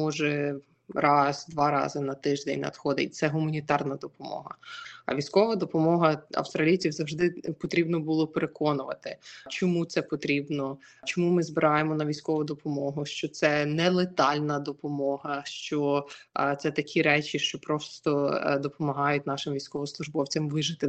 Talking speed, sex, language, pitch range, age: 115 wpm, female, Ukrainian, 145-165 Hz, 20-39